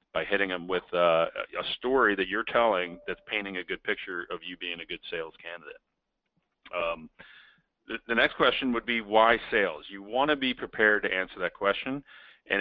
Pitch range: 95-115 Hz